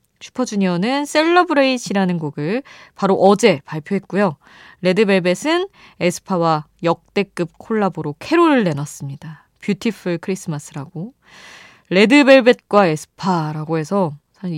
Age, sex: 20-39, female